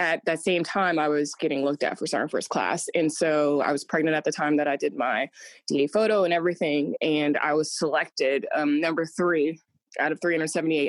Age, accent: 20-39, American